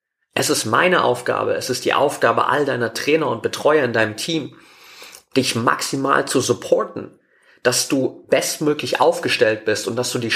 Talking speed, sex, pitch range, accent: 170 wpm, male, 115-160 Hz, German